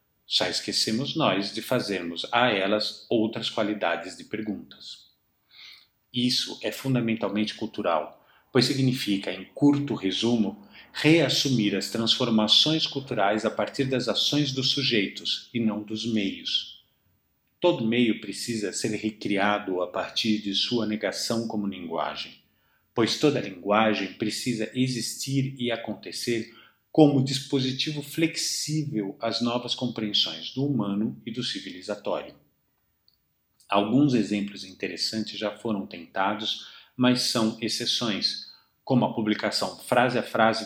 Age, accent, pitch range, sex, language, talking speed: 50-69, Brazilian, 105-125 Hz, male, Portuguese, 115 wpm